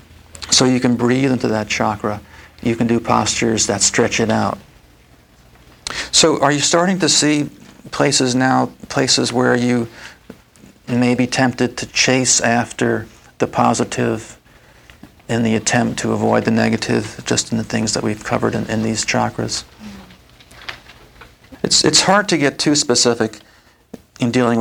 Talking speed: 150 wpm